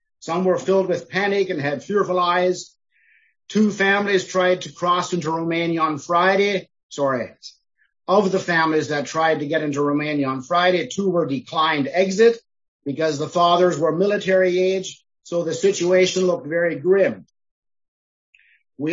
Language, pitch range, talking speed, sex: English, 160-190 Hz, 150 wpm, male